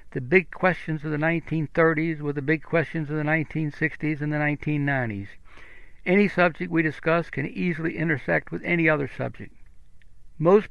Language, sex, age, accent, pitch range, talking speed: English, male, 60-79, American, 135-160 Hz, 155 wpm